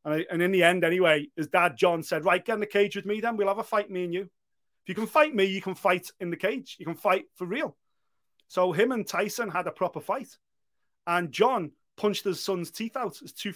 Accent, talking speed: British, 250 wpm